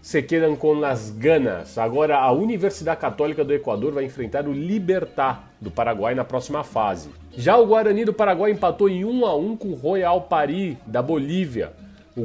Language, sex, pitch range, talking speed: Portuguese, male, 145-190 Hz, 175 wpm